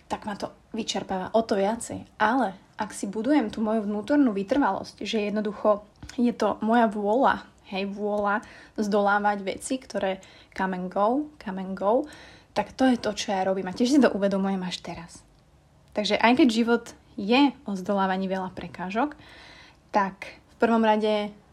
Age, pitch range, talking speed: 20-39, 200-235 Hz, 165 wpm